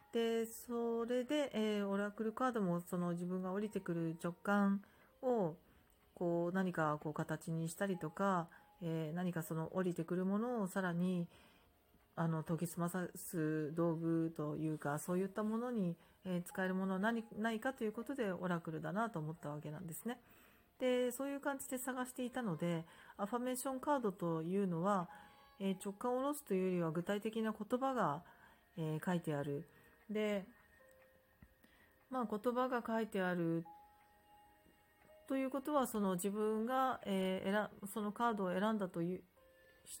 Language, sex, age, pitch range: Japanese, female, 40-59, 165-220 Hz